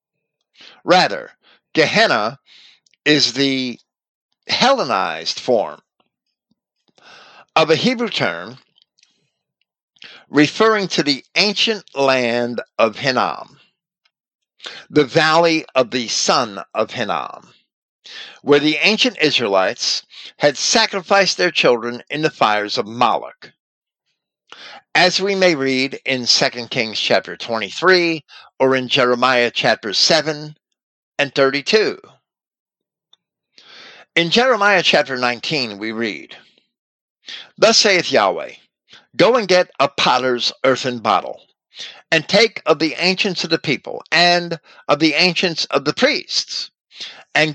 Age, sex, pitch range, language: 50-69, male, 130-185 Hz, English